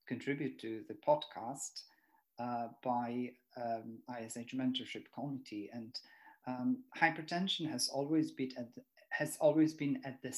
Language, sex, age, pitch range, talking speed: English, male, 40-59, 125-145 Hz, 135 wpm